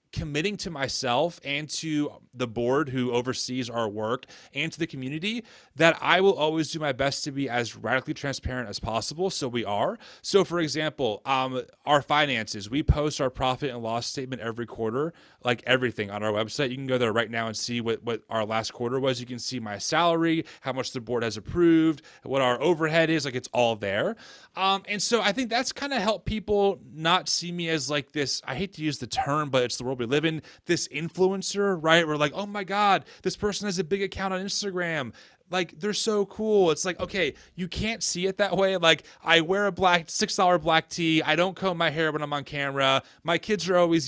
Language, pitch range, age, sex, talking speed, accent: English, 130-185 Hz, 30-49, male, 225 wpm, American